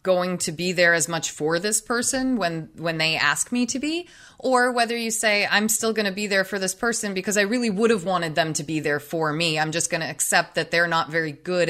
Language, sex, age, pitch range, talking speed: English, female, 20-39, 170-220 Hz, 260 wpm